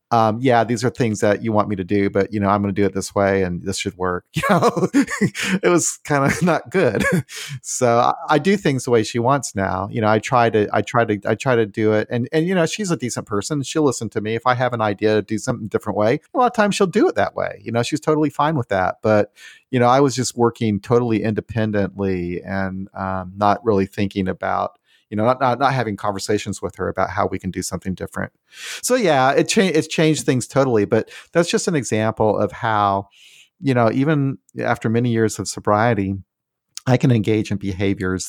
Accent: American